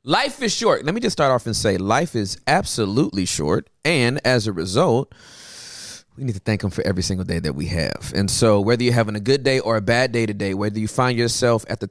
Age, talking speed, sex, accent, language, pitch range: 30-49, 245 wpm, male, American, English, 105-135 Hz